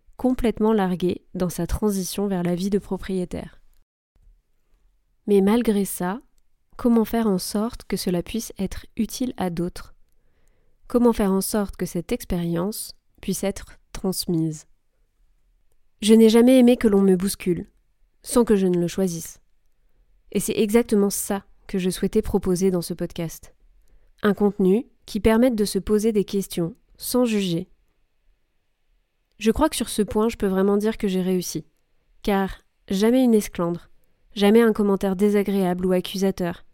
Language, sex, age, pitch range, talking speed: French, female, 20-39, 180-220 Hz, 150 wpm